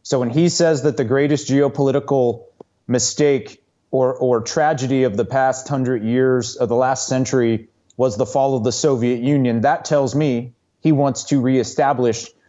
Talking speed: 170 wpm